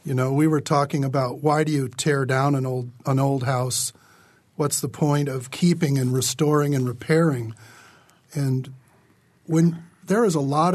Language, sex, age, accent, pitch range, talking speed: English, male, 50-69, American, 130-160 Hz, 175 wpm